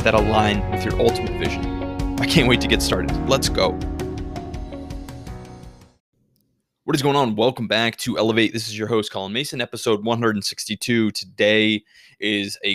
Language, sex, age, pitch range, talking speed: English, male, 20-39, 100-115 Hz, 155 wpm